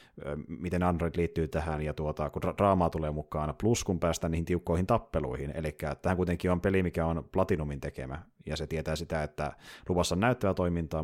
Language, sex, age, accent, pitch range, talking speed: Finnish, male, 30-49, native, 80-90 Hz, 190 wpm